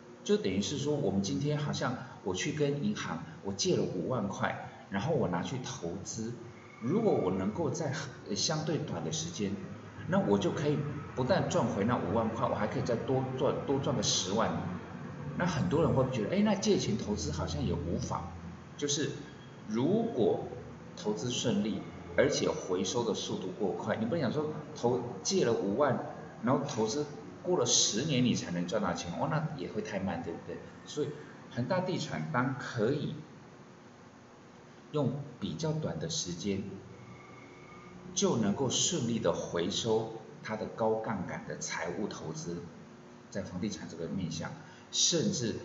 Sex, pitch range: male, 105-150 Hz